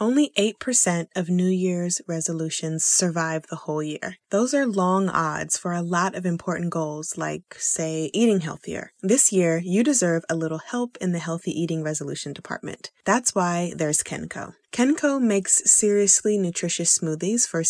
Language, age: English, 20-39